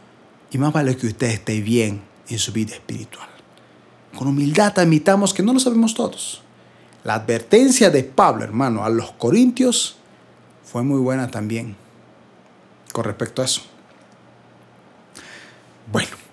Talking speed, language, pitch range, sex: 130 wpm, Spanish, 110-170 Hz, male